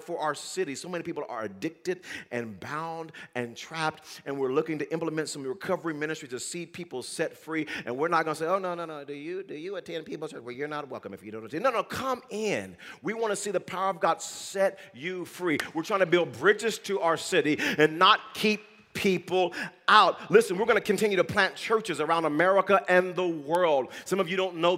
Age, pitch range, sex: 40-59, 140-180 Hz, male